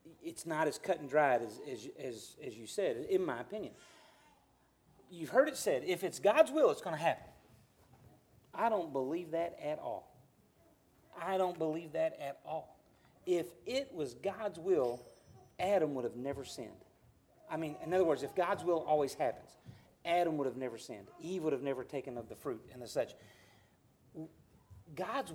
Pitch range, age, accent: 160-245 Hz, 40-59, American